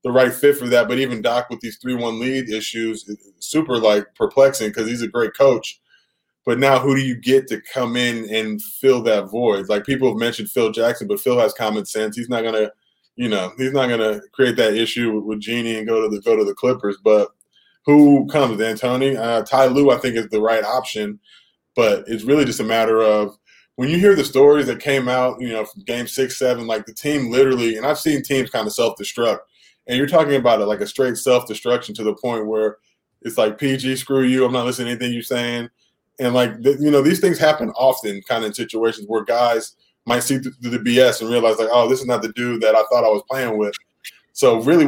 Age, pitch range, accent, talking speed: 20-39, 110-135 Hz, American, 235 wpm